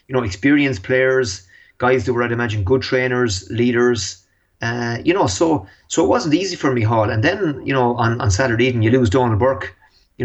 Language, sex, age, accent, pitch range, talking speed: English, male, 30-49, Irish, 100-125 Hz, 210 wpm